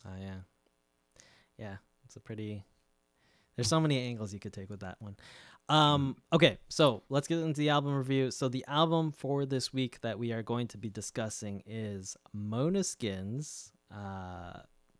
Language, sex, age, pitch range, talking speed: English, male, 20-39, 105-145 Hz, 170 wpm